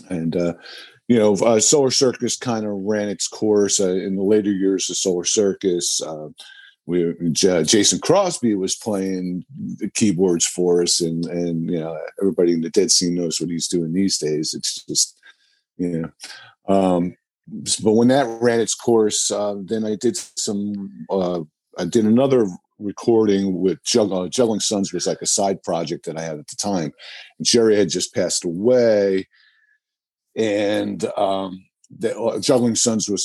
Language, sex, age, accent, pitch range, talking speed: English, male, 50-69, American, 85-110 Hz, 170 wpm